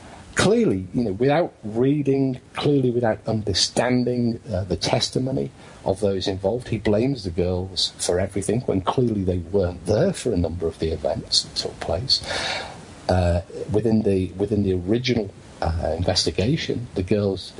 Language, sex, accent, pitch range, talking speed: English, male, British, 90-115 Hz, 150 wpm